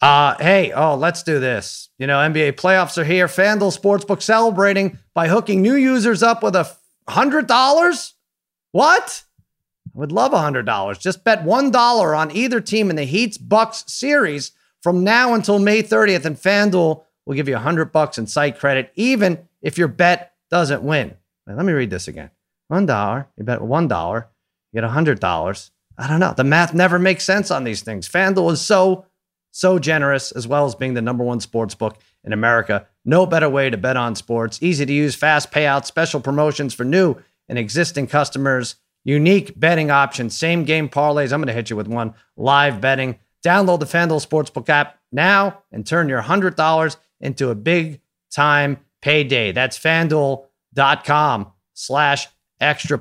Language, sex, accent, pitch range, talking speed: English, male, American, 130-180 Hz, 175 wpm